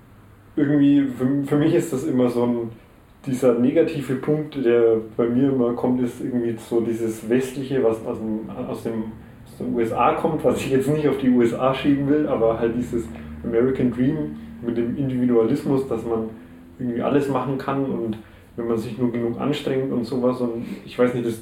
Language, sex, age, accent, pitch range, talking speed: German, male, 30-49, German, 115-125 Hz, 190 wpm